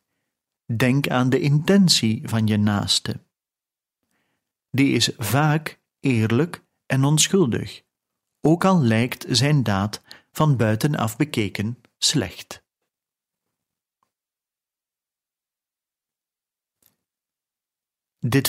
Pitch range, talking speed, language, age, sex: 115-150 Hz, 75 wpm, Dutch, 40-59, male